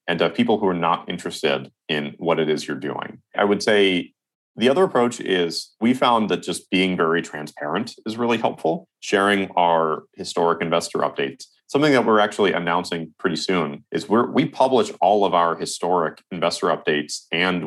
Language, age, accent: English, 30-49, American